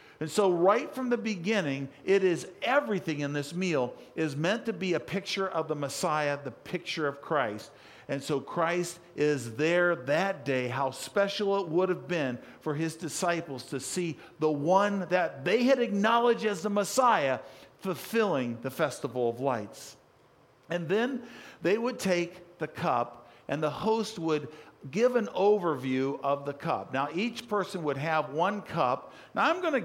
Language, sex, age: English, male, 50-69